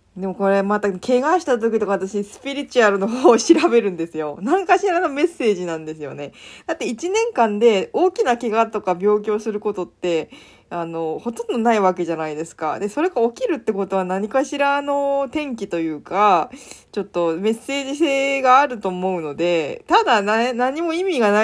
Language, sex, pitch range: Japanese, female, 170-250 Hz